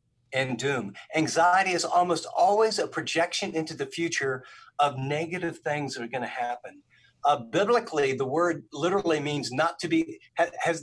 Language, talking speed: English, 160 wpm